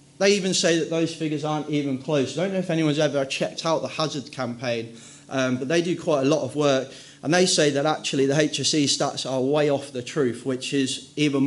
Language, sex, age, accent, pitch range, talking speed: English, male, 30-49, British, 130-150 Hz, 235 wpm